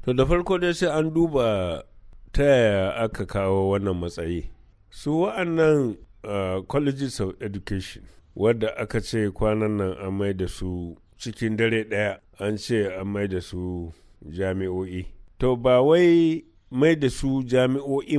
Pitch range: 95-125 Hz